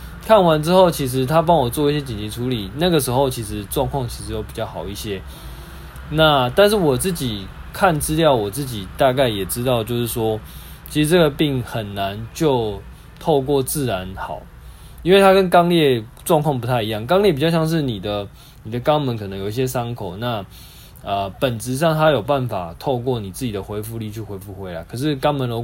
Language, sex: Chinese, male